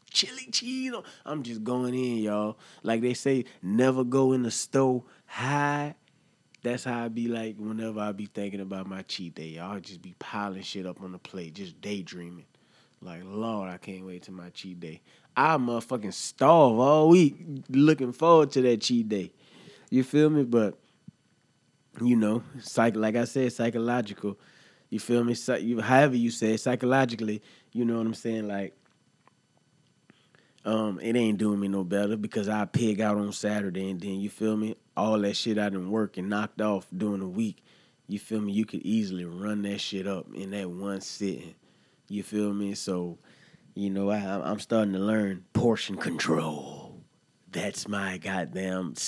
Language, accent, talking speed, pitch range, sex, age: English, American, 180 wpm, 100-120 Hz, male, 20-39